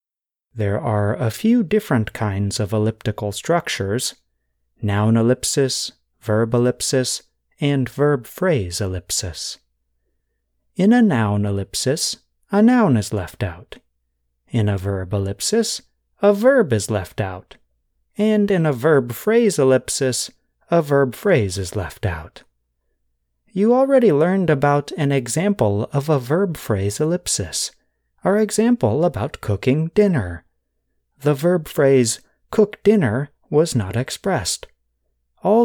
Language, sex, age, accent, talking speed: English, male, 30-49, American, 120 wpm